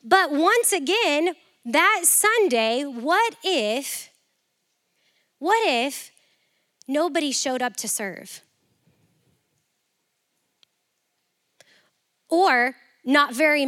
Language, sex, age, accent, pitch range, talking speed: English, female, 20-39, American, 275-350 Hz, 75 wpm